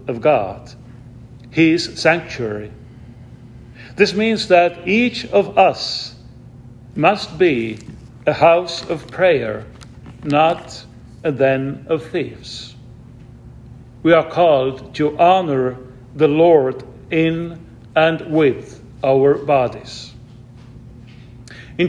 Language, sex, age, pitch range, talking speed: English, male, 50-69, 120-170 Hz, 95 wpm